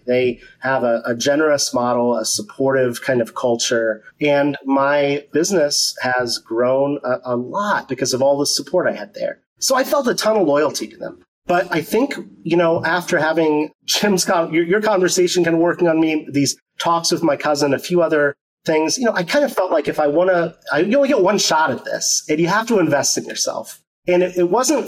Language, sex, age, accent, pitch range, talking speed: English, male, 30-49, American, 135-175 Hz, 215 wpm